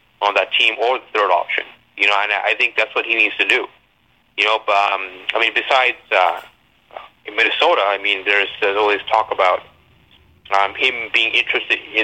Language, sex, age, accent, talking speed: English, male, 30-49, American, 195 wpm